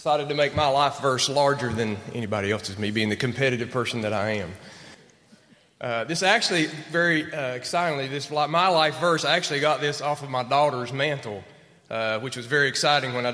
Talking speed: 200 wpm